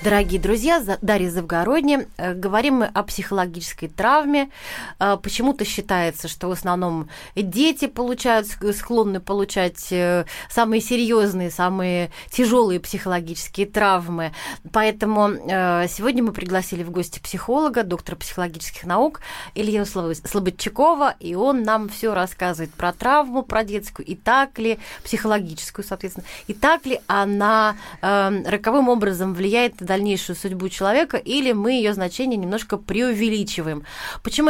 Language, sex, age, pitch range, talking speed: Russian, female, 30-49, 185-240 Hz, 120 wpm